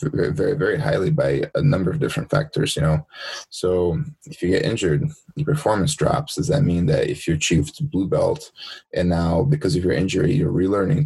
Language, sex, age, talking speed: English, male, 20-39, 195 wpm